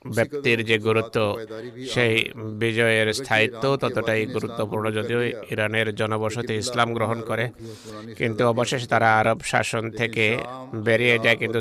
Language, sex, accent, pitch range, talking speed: Bengali, male, native, 110-125 Hz, 65 wpm